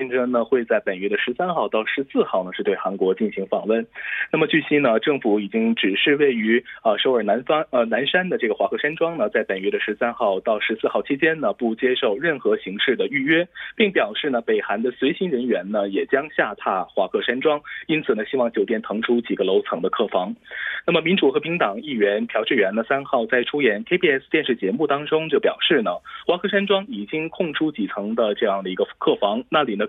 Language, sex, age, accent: Korean, male, 20-39, Chinese